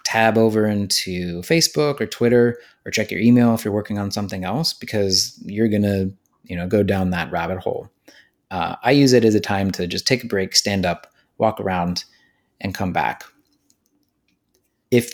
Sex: male